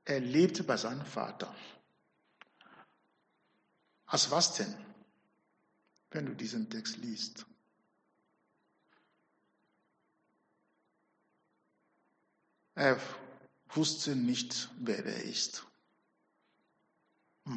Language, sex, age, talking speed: German, male, 60-79, 70 wpm